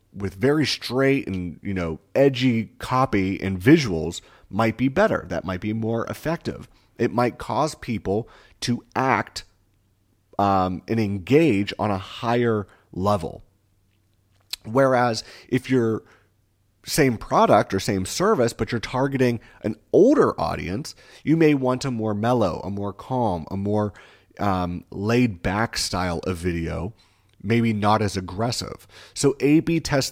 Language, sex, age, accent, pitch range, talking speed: English, male, 30-49, American, 95-125 Hz, 140 wpm